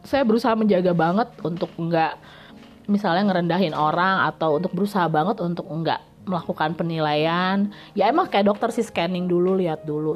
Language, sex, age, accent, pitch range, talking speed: Indonesian, female, 30-49, native, 185-250 Hz, 155 wpm